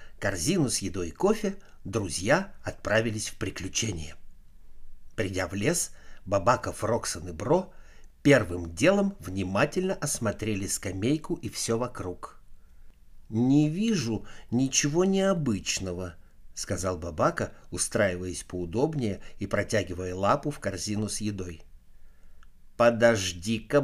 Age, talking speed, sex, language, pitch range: 60-79, 100 wpm, male, Russian, 85-140 Hz